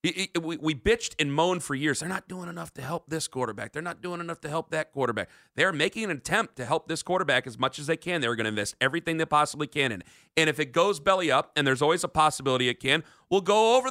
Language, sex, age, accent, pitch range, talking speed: English, male, 40-59, American, 155-220 Hz, 265 wpm